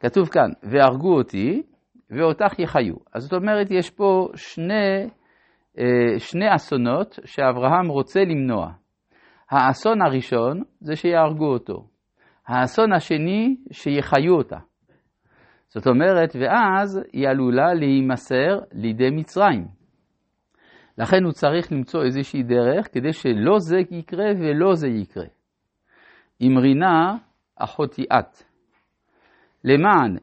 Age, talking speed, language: 50-69, 100 wpm, Hebrew